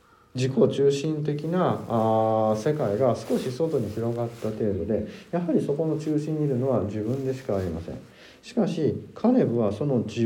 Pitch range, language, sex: 115-190 Hz, Japanese, male